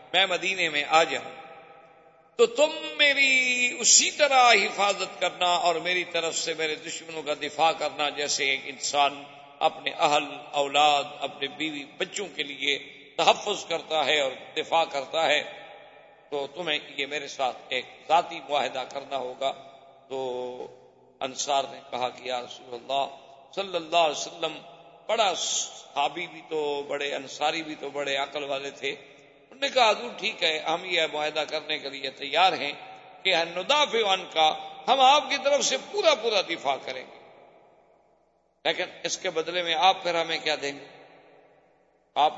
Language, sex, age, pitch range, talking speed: Urdu, male, 50-69, 145-190 Hz, 160 wpm